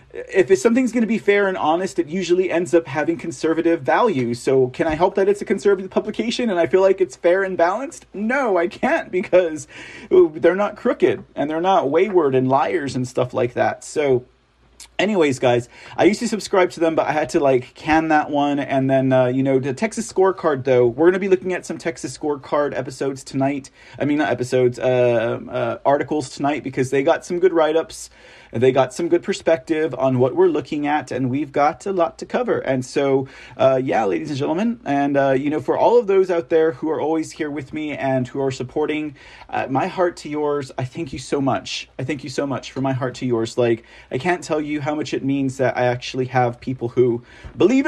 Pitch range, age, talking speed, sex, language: 135-195 Hz, 40-59, 225 wpm, male, English